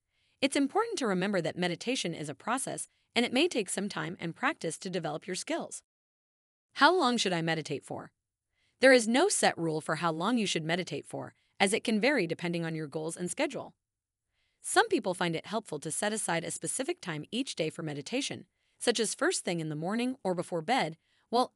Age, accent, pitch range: 30-49, American, 160-235 Hz